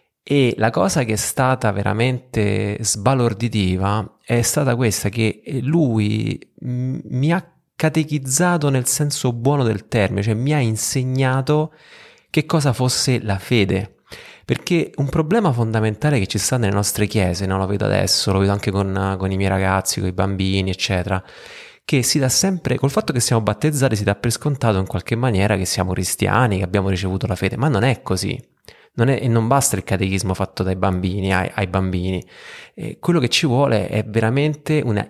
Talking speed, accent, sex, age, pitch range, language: 180 wpm, native, male, 30-49, 100-135 Hz, Italian